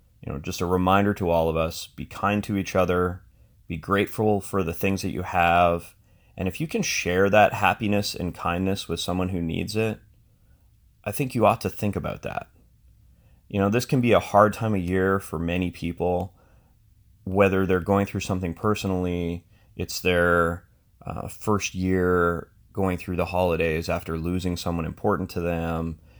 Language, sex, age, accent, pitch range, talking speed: English, male, 30-49, American, 85-100 Hz, 180 wpm